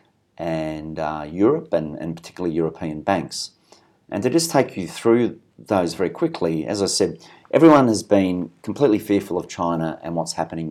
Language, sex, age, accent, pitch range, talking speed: English, male, 40-59, Australian, 80-100 Hz, 170 wpm